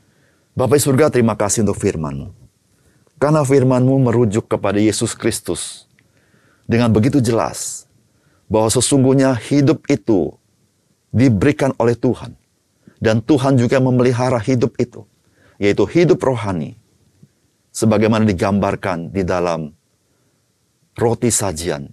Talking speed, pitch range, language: 105 wpm, 100-130 Hz, Indonesian